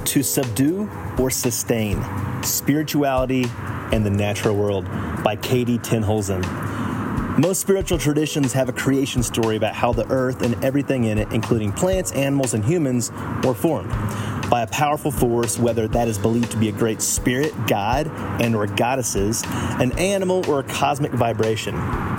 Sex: male